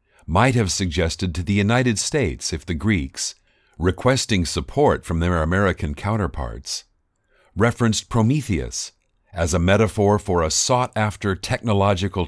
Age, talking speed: 50-69, 120 wpm